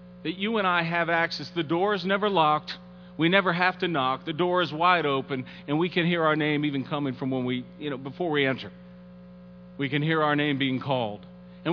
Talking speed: 230 wpm